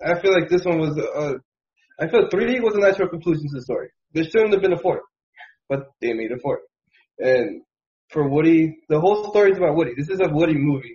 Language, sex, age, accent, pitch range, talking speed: English, male, 20-39, American, 140-185 Hz, 235 wpm